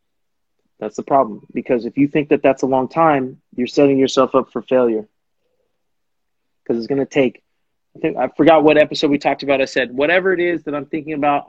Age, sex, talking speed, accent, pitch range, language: 20-39, male, 215 wpm, American, 125-150 Hz, English